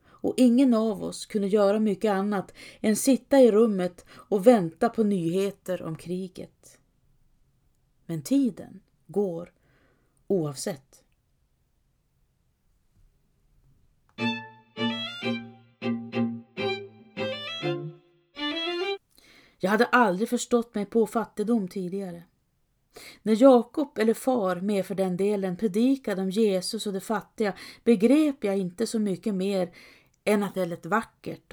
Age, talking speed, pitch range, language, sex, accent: 40-59, 105 wpm, 140-220 Hz, Swedish, female, native